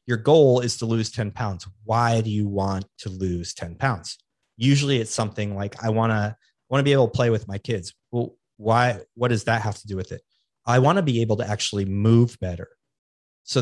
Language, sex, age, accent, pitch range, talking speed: English, male, 30-49, American, 105-130 Hz, 215 wpm